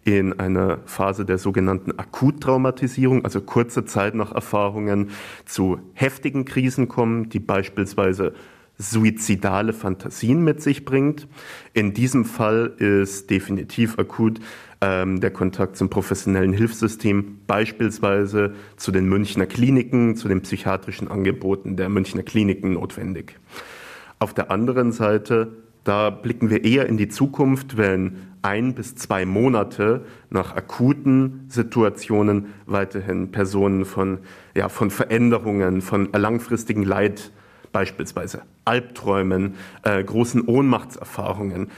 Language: German